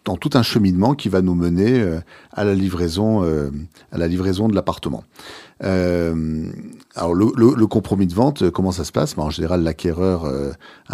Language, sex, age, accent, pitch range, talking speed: French, male, 50-69, French, 80-105 Hz, 190 wpm